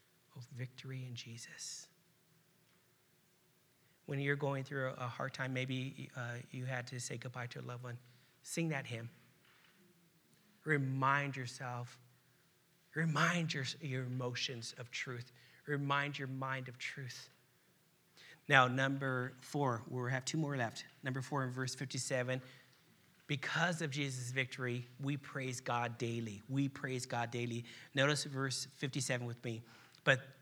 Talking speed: 135 wpm